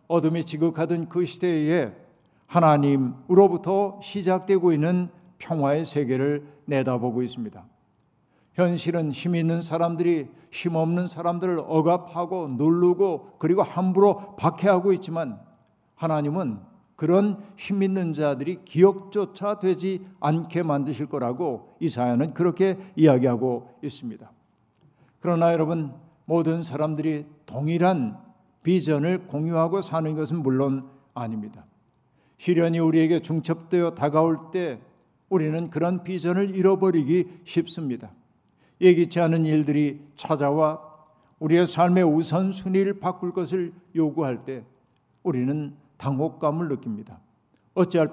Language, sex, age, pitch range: Korean, male, 60-79, 145-180 Hz